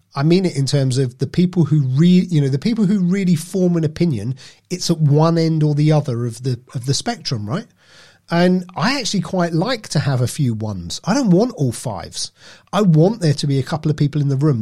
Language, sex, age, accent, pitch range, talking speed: English, male, 30-49, British, 135-170 Hz, 240 wpm